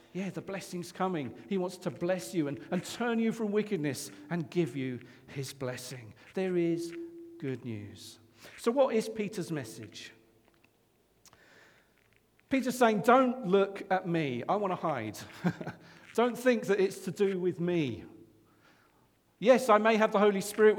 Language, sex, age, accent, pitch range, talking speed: English, male, 50-69, British, 130-195 Hz, 155 wpm